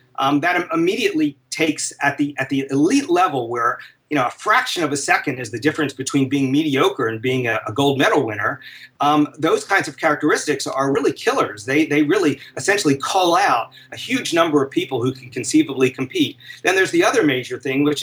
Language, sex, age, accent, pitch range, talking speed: English, male, 40-59, American, 130-155 Hz, 205 wpm